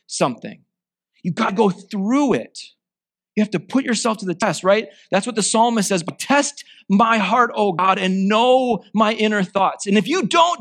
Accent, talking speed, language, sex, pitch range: American, 200 wpm, English, male, 165-225 Hz